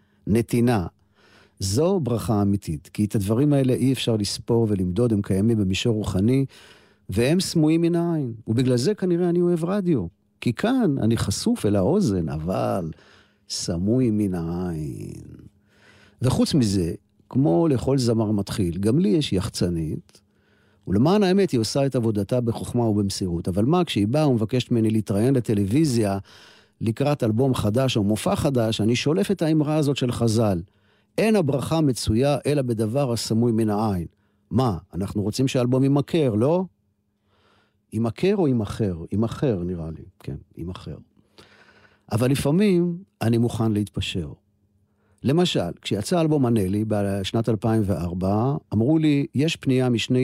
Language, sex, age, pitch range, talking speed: Hebrew, male, 50-69, 105-135 Hz, 135 wpm